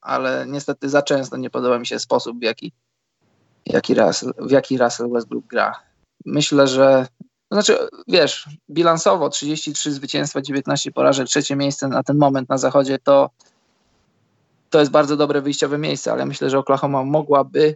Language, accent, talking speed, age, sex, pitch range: Polish, native, 150 wpm, 20-39, male, 130-150 Hz